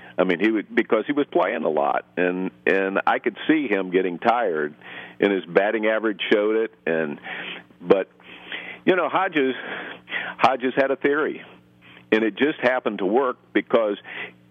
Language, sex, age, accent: English, male, 50-69, American